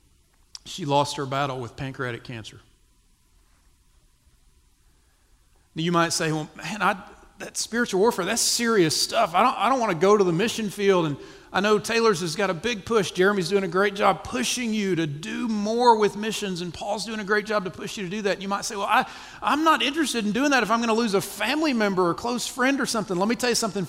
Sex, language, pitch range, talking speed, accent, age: male, English, 155-220 Hz, 235 wpm, American, 40-59